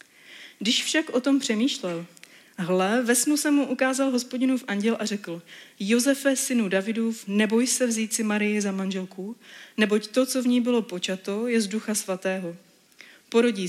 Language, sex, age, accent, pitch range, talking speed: Czech, female, 30-49, native, 195-240 Hz, 165 wpm